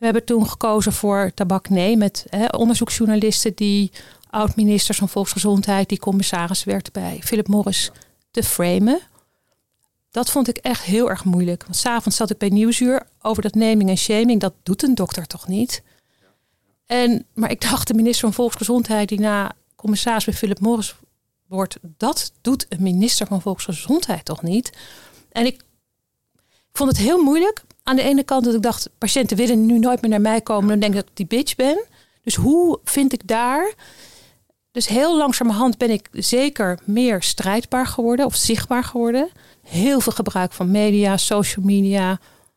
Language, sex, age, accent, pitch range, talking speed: Dutch, female, 40-59, Dutch, 200-245 Hz, 175 wpm